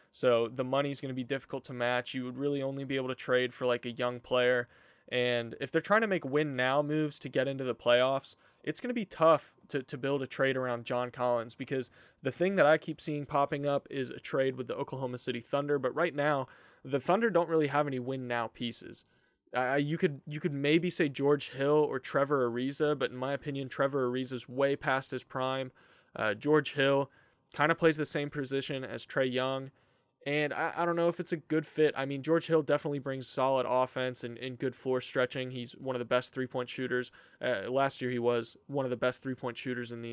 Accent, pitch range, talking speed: American, 125-150 Hz, 230 wpm